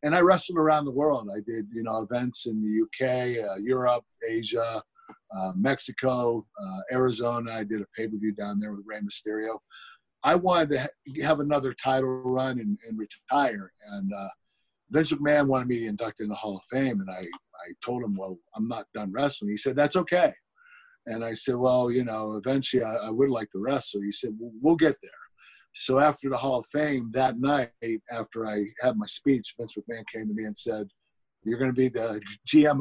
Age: 50-69